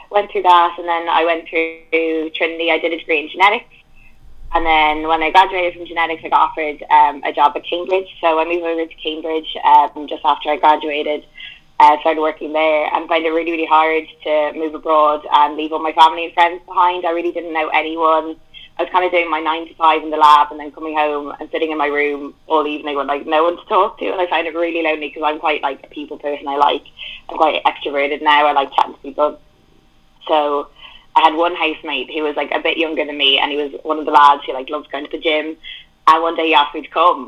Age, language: 20-39, English